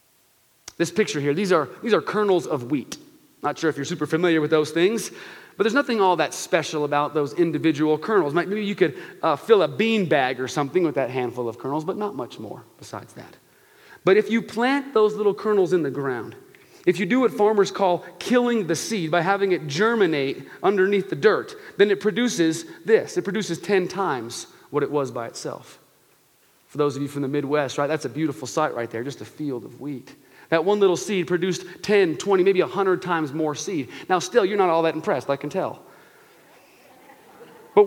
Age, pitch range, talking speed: 30-49, 155-215 Hz, 205 wpm